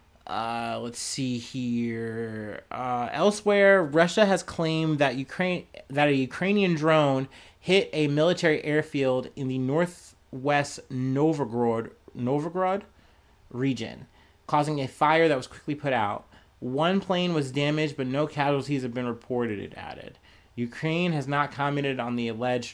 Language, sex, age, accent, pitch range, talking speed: English, male, 30-49, American, 120-155 Hz, 135 wpm